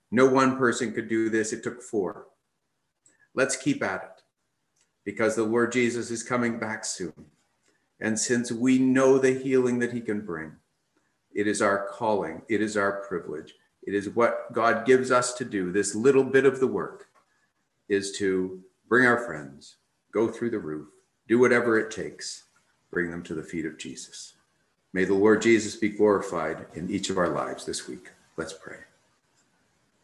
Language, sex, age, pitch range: English, male, 50-69, 100-125 Hz